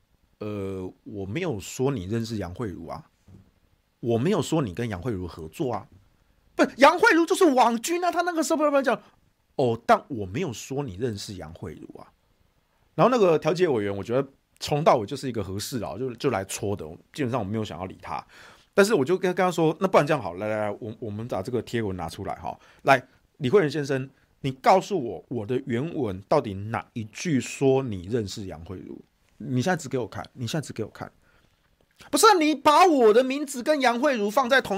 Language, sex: Chinese, male